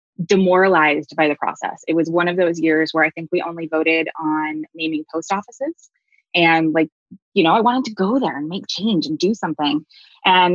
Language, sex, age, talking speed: English, female, 20-39, 205 wpm